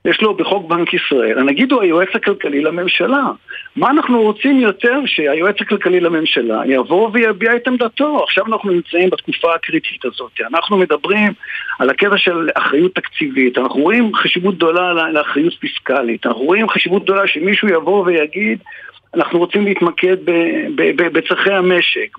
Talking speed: 140 wpm